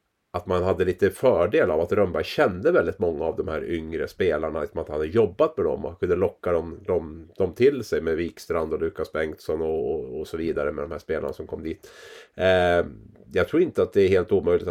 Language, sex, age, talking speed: Swedish, male, 30-49, 230 wpm